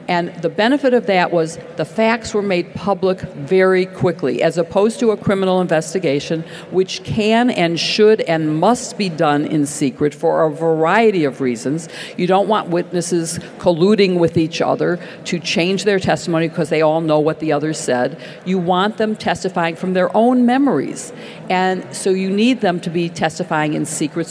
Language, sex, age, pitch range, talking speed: English, female, 50-69, 165-205 Hz, 180 wpm